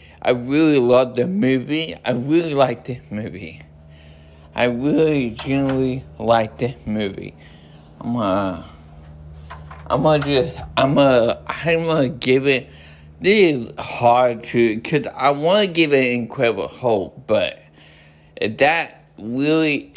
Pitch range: 90-140 Hz